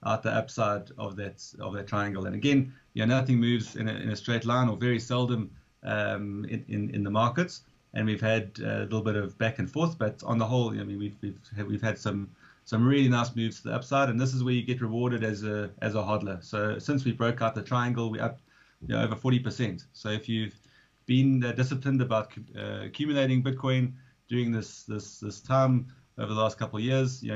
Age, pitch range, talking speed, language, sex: 30-49, 105-125 Hz, 230 wpm, English, male